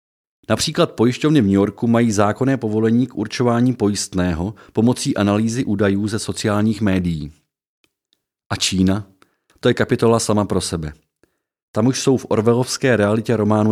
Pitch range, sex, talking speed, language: 95-115 Hz, male, 140 wpm, Czech